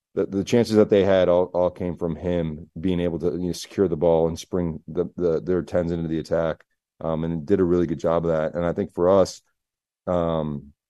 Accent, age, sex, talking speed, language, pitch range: American, 30-49, male, 215 wpm, English, 80-95 Hz